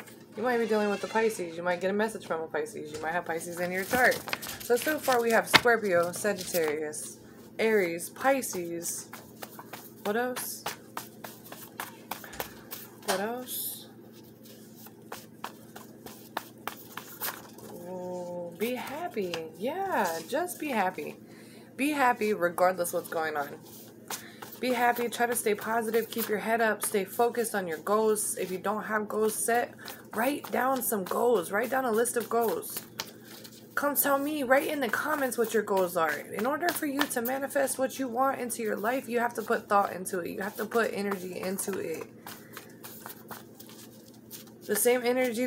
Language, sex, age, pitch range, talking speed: English, female, 20-39, 175-245 Hz, 155 wpm